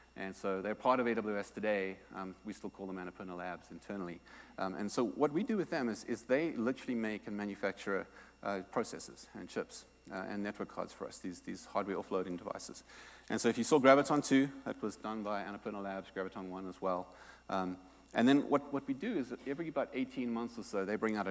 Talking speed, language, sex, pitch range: 220 wpm, English, male, 95-130 Hz